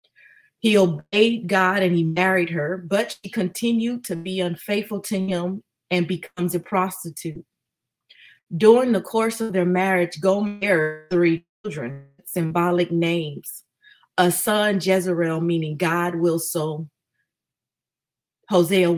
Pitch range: 170-200 Hz